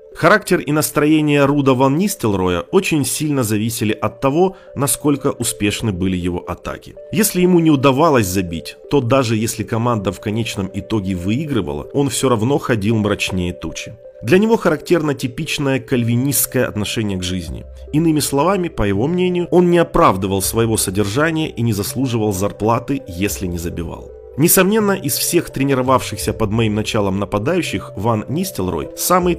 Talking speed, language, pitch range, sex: 145 wpm, Russian, 100-145 Hz, male